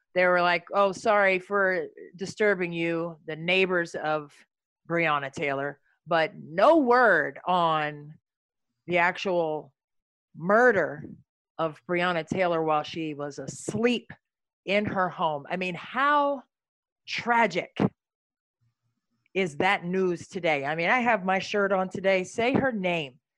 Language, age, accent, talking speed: English, 40-59, American, 125 wpm